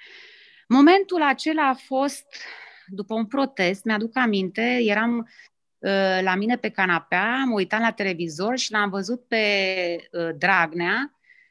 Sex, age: female, 30-49